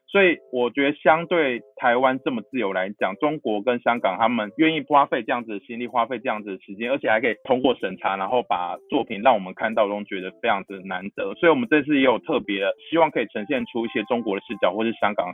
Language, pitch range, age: Chinese, 100-130 Hz, 20-39